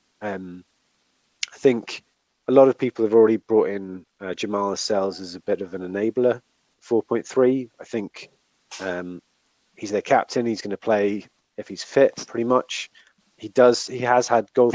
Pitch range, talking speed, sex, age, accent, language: 95-115 Hz, 165 wpm, male, 30-49, British, English